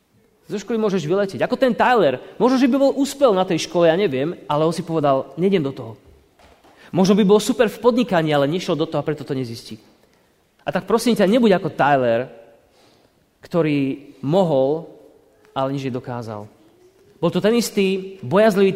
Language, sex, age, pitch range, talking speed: Slovak, male, 30-49, 125-175 Hz, 180 wpm